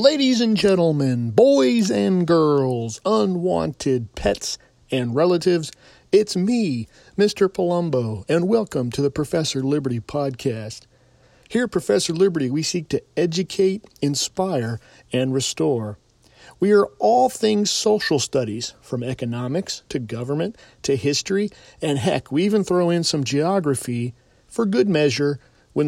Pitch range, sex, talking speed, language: 130-180 Hz, male, 130 wpm, English